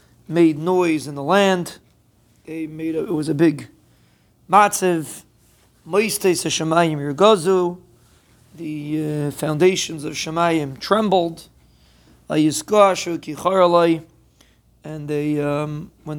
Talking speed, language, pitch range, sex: 85 wpm, English, 150-180 Hz, male